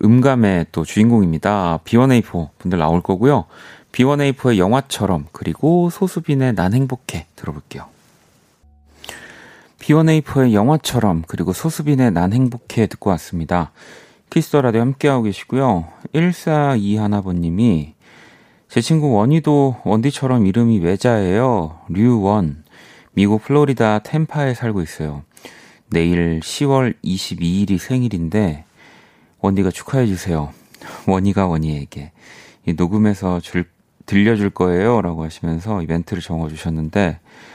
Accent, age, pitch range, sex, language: native, 30-49, 85-125 Hz, male, Korean